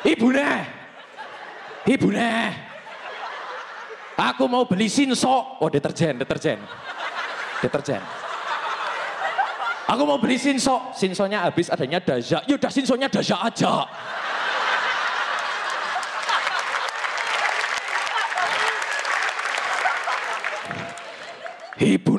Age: 20-39